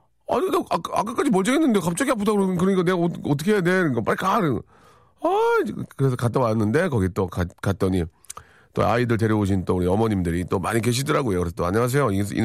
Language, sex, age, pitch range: Korean, male, 40-59, 100-155 Hz